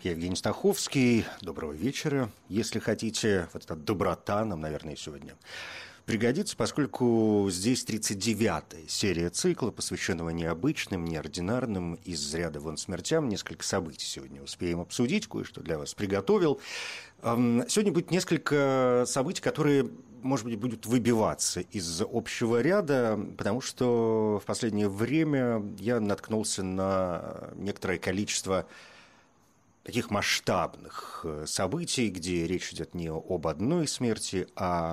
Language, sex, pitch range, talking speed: Russian, male, 85-120 Hz, 115 wpm